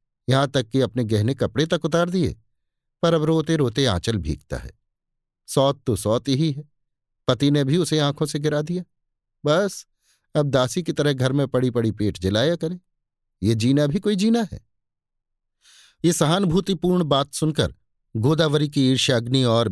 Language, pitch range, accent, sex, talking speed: Hindi, 115-155 Hz, native, male, 165 wpm